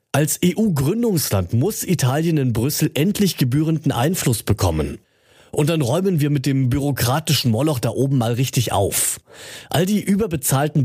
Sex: male